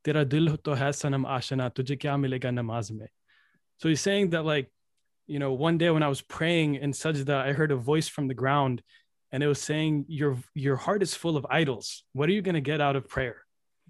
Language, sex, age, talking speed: English, male, 20-39, 180 wpm